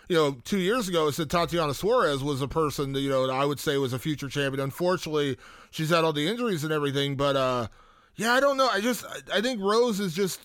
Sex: male